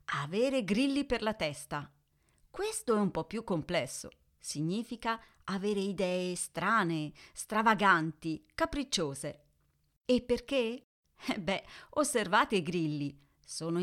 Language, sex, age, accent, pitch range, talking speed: Italian, female, 40-59, native, 160-245 Hz, 110 wpm